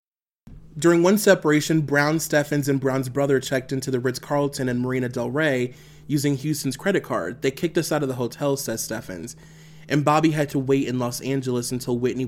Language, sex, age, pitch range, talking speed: English, male, 30-49, 130-160 Hz, 190 wpm